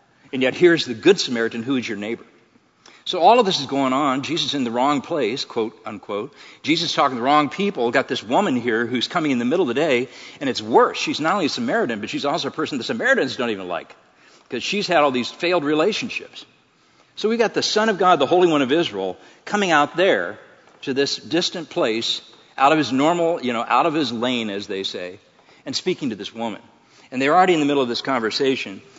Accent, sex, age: American, male, 50-69